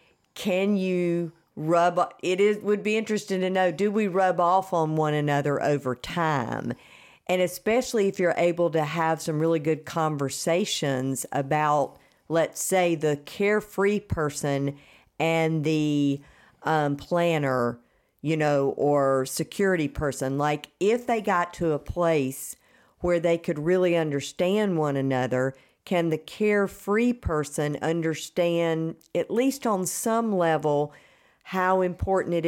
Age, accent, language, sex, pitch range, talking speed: 50-69, American, English, female, 155-190 Hz, 135 wpm